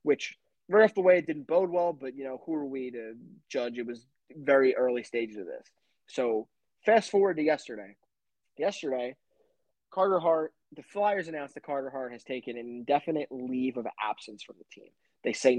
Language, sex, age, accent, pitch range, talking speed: English, male, 20-39, American, 130-165 Hz, 195 wpm